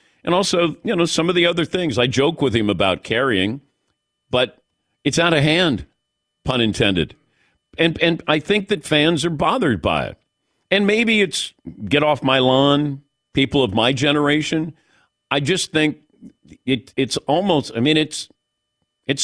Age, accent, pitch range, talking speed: 50-69, American, 145-195 Hz, 165 wpm